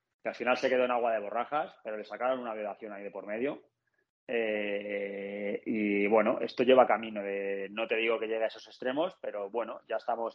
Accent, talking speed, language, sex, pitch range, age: Spanish, 215 wpm, Spanish, male, 100-115 Hz, 20-39